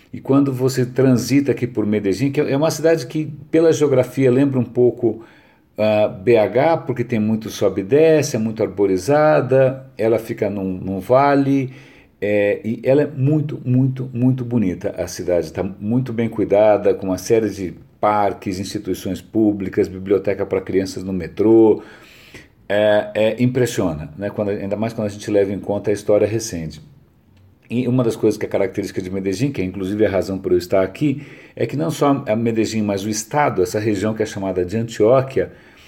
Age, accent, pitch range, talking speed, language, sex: 50-69, Brazilian, 105-135 Hz, 175 wpm, Portuguese, male